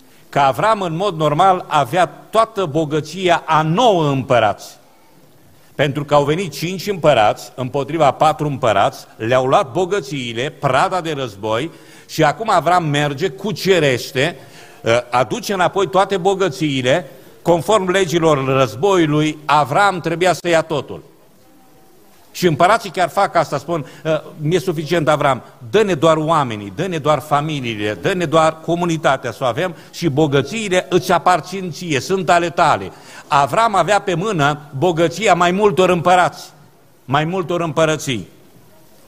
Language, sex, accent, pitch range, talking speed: Romanian, male, native, 140-180 Hz, 130 wpm